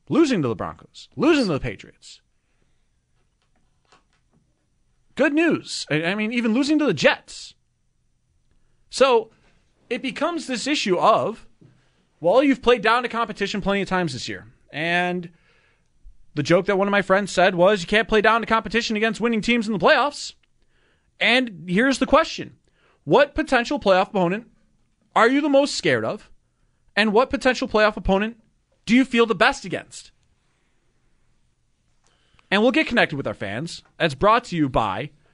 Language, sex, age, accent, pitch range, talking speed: English, male, 30-49, American, 145-230 Hz, 160 wpm